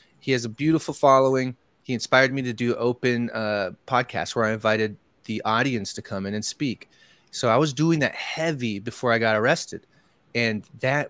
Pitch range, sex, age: 115-140 Hz, male, 20-39